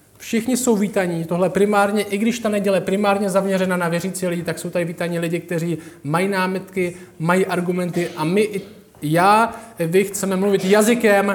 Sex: male